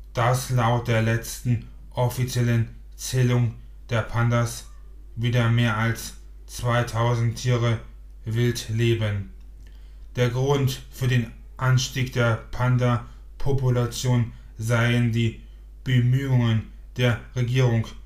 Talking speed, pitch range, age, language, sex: 90 wpm, 110-125 Hz, 20-39, German, male